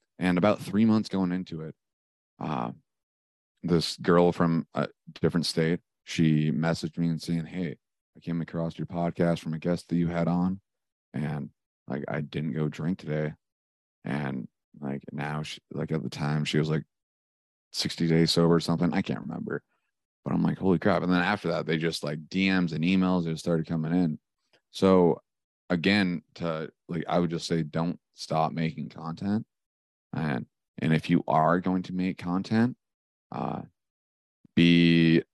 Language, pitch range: English, 80-90 Hz